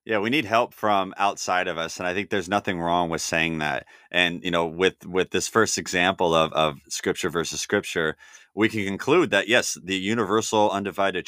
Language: English